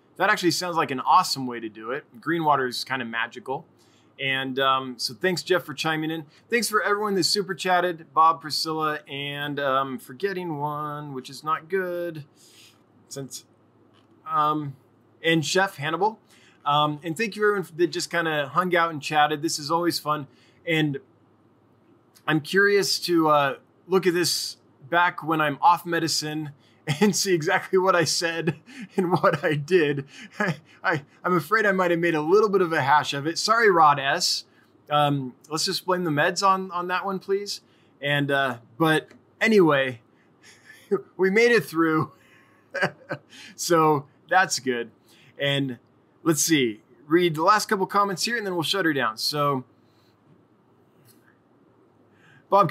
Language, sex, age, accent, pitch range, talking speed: English, male, 20-39, American, 140-185 Hz, 165 wpm